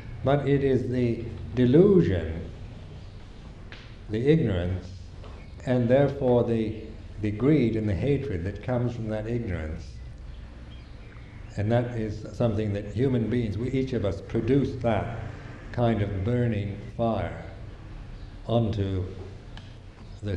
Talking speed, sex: 115 wpm, male